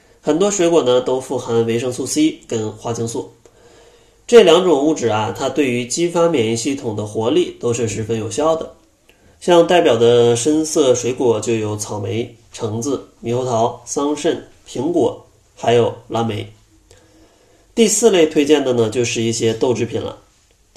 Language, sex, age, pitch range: Chinese, male, 20-39, 115-150 Hz